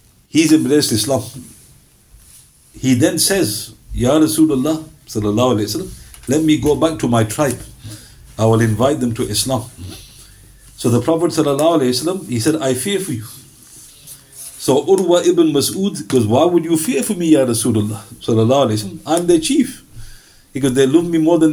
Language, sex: English, male